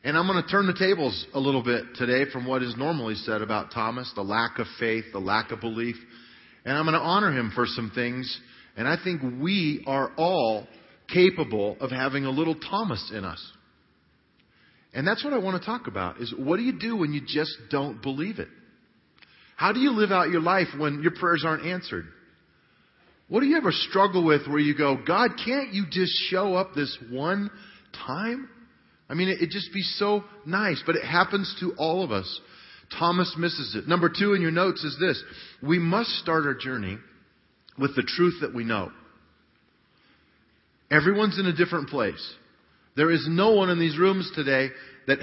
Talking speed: 195 wpm